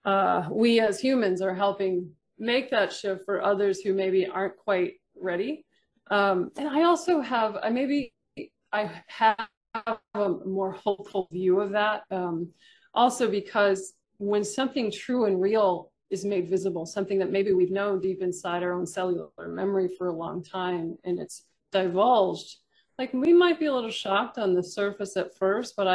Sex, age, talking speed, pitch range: female, 30-49, 165 wpm, 190-240 Hz